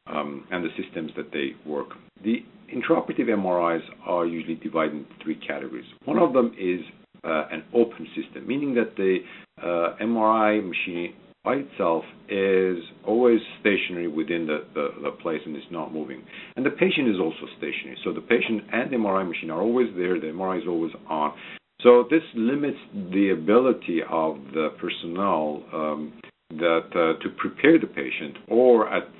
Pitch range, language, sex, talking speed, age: 80-110 Hz, English, male, 170 wpm, 50-69